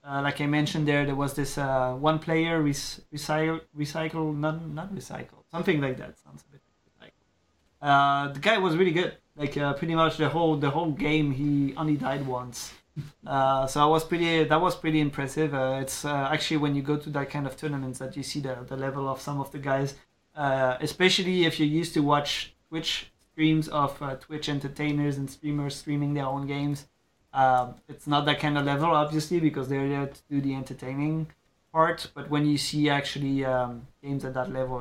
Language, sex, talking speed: English, male, 205 wpm